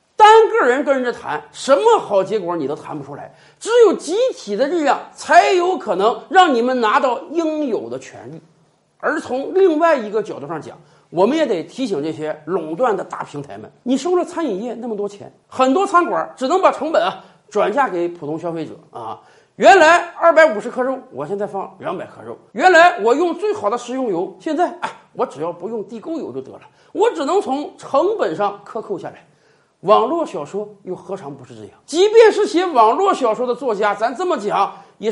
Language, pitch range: Chinese, 240-370 Hz